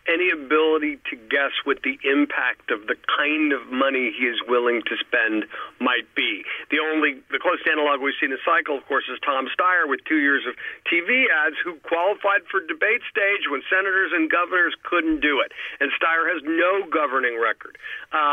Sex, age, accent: male, 50-69, American